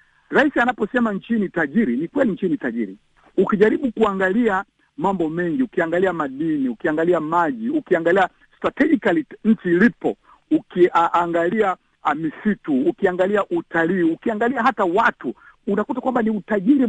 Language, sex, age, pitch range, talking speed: Swahili, male, 50-69, 175-245 Hz, 115 wpm